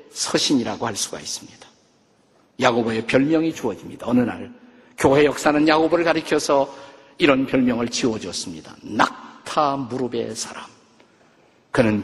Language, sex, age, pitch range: Korean, male, 50-69, 155-220 Hz